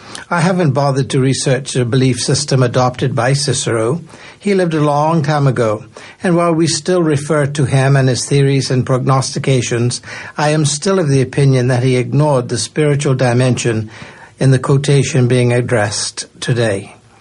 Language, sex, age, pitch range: English, male, 60-79, 125-155 Hz